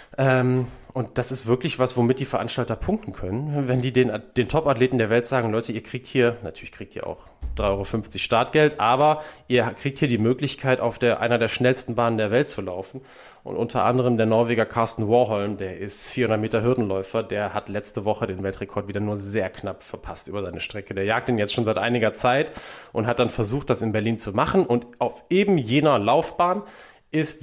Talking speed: 205 wpm